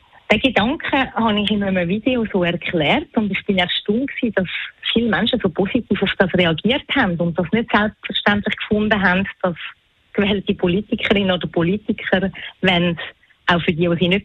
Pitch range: 180-220 Hz